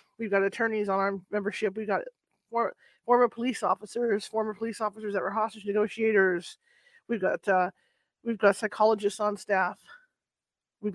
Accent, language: American, English